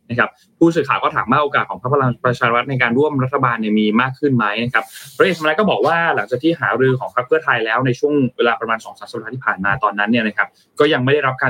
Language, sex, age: Thai, male, 20-39